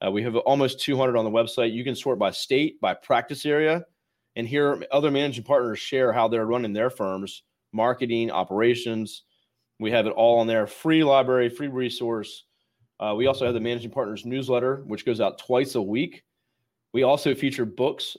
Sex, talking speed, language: male, 190 wpm, English